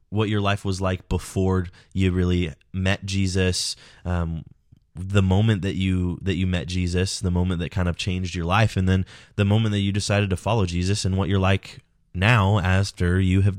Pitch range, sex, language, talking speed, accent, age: 90-110 Hz, male, English, 200 wpm, American, 20-39